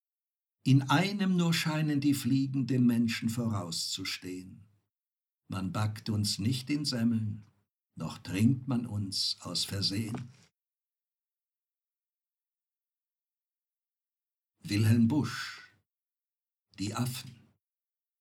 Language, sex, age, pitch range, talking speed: German, male, 60-79, 110-155 Hz, 80 wpm